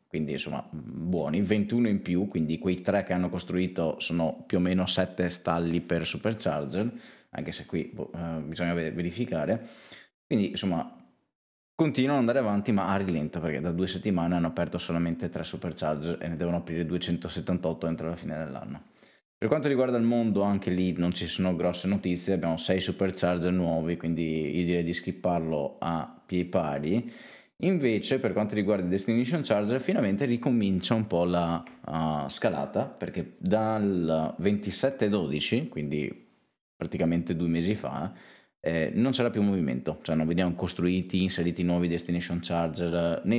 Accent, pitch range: native, 85-100 Hz